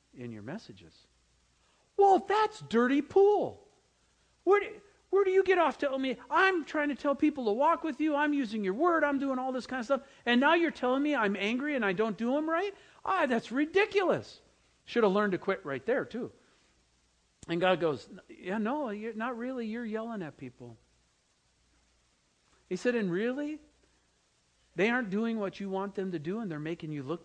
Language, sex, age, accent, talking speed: English, male, 50-69, American, 195 wpm